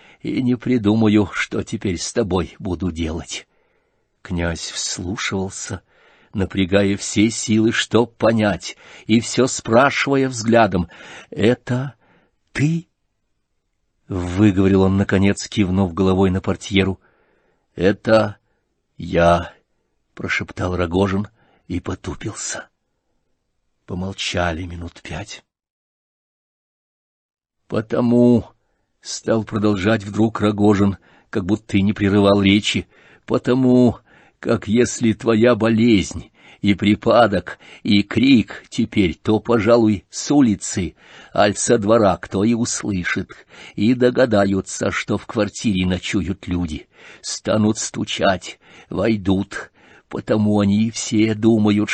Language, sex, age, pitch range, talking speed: English, male, 50-69, 95-115 Hz, 95 wpm